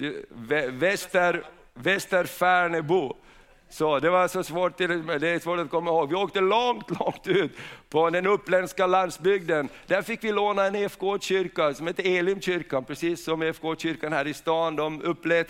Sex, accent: male, native